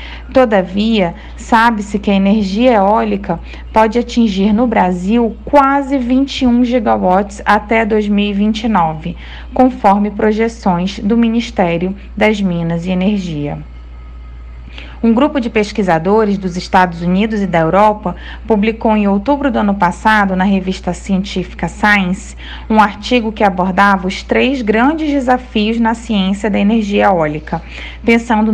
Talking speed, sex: 120 wpm, female